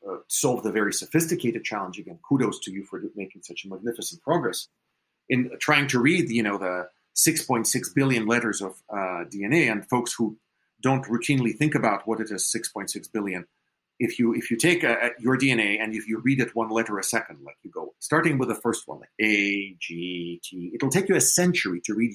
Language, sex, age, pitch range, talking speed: English, male, 40-59, 110-150 Hz, 205 wpm